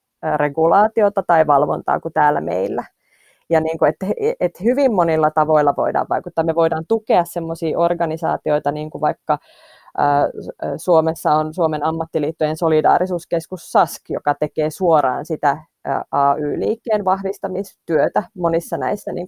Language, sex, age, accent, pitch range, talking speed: Finnish, female, 30-49, native, 155-185 Hz, 130 wpm